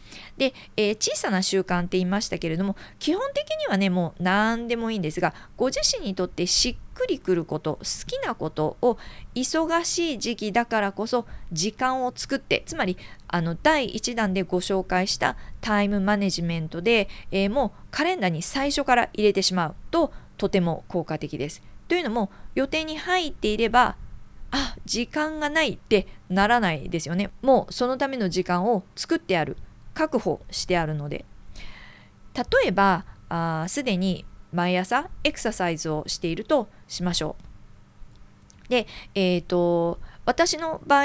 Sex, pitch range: female, 175-245 Hz